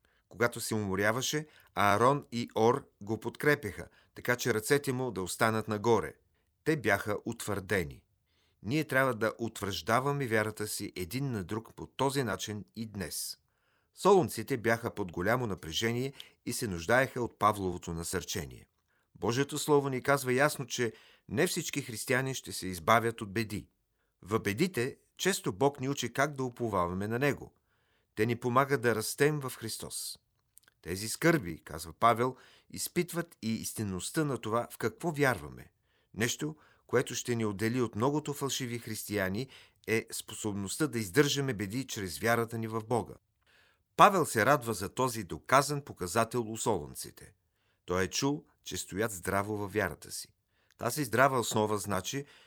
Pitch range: 100-130 Hz